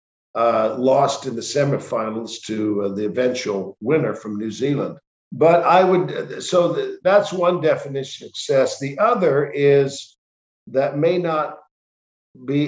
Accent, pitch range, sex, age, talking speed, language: American, 120-155 Hz, male, 50-69, 135 wpm, English